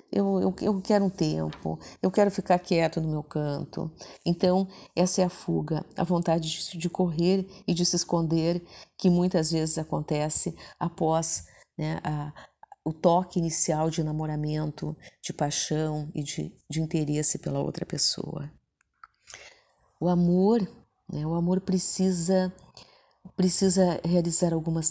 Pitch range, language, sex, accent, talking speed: 155-185 Hz, Portuguese, female, Brazilian, 135 wpm